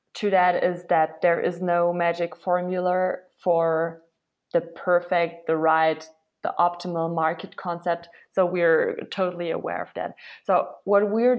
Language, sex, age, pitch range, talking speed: English, female, 20-39, 170-190 Hz, 140 wpm